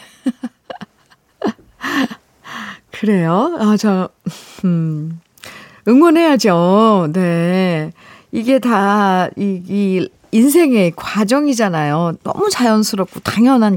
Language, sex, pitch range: Korean, female, 185-270 Hz